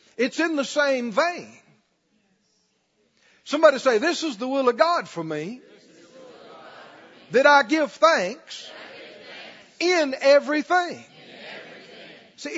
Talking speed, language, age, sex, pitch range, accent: 105 wpm, English, 50-69, male, 205-310 Hz, American